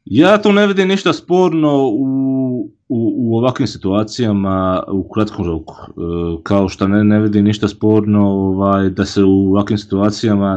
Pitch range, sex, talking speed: 100-120 Hz, male, 160 wpm